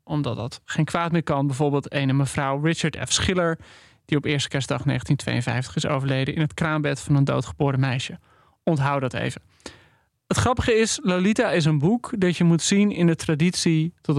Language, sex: Dutch, male